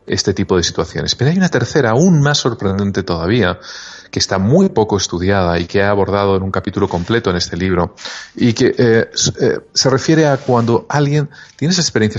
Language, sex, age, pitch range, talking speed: Spanish, male, 40-59, 95-130 Hz, 195 wpm